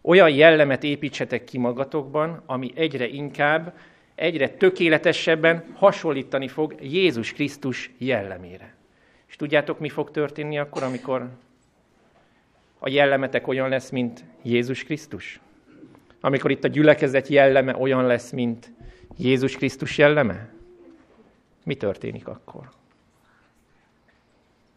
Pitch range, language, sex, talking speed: 125-155 Hz, Hungarian, male, 105 wpm